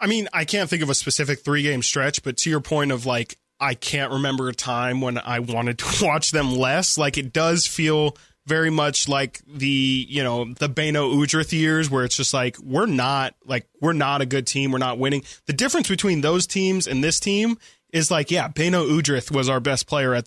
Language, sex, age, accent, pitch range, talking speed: English, male, 20-39, American, 130-160 Hz, 220 wpm